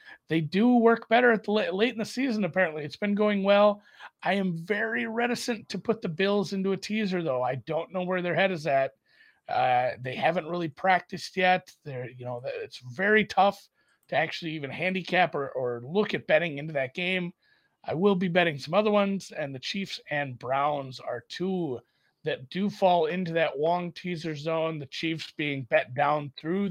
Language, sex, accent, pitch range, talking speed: English, male, American, 150-210 Hz, 200 wpm